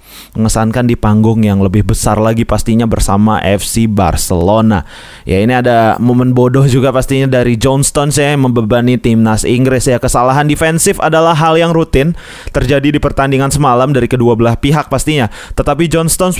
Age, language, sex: 20-39, Indonesian, male